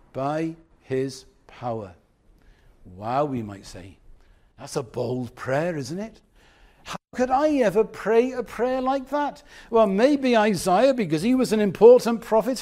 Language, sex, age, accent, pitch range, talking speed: English, male, 60-79, British, 155-235 Hz, 145 wpm